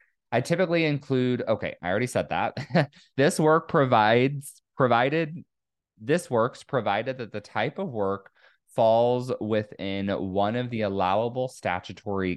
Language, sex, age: English, male, 20-39